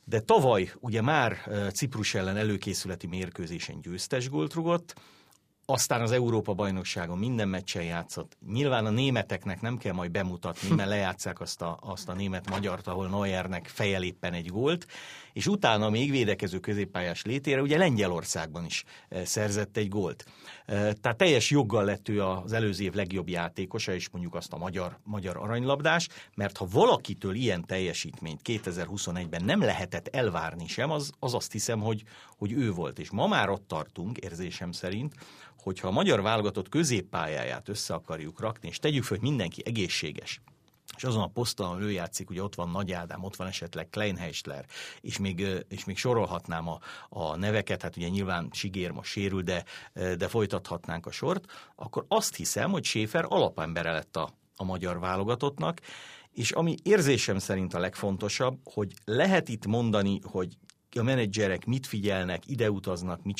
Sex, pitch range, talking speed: male, 90-115 Hz, 155 wpm